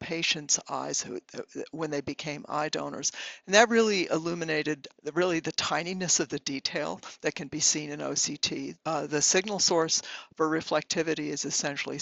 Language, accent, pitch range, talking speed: English, American, 145-165 Hz, 160 wpm